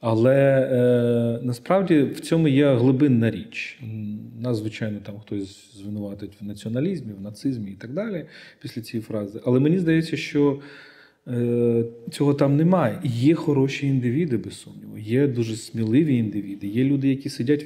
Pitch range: 115-145 Hz